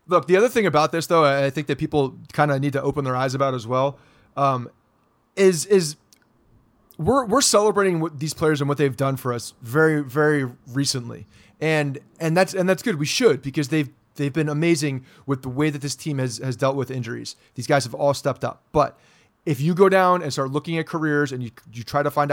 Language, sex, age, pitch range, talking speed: English, male, 30-49, 135-180 Hz, 230 wpm